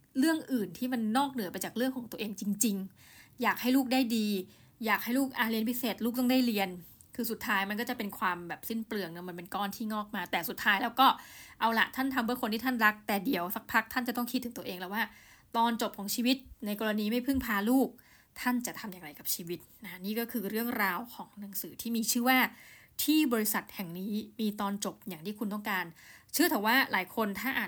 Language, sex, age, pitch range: Thai, female, 20-39, 195-245 Hz